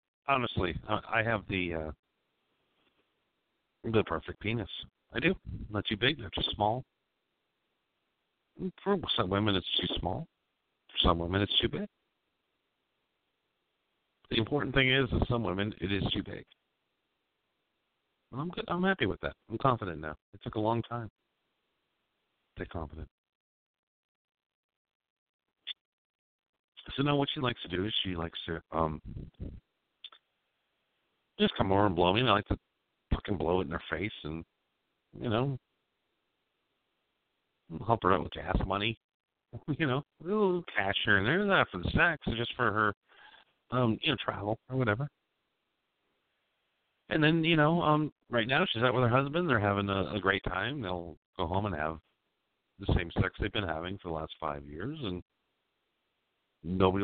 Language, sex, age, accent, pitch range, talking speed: English, male, 50-69, American, 90-125 Hz, 160 wpm